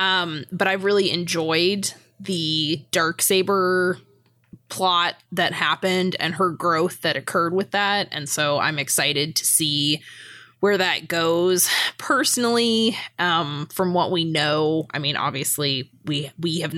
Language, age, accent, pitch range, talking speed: English, 20-39, American, 145-180 Hz, 135 wpm